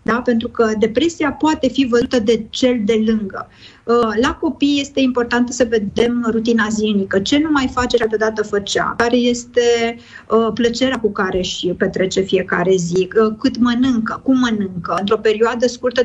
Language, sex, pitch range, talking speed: Romanian, female, 220-250 Hz, 165 wpm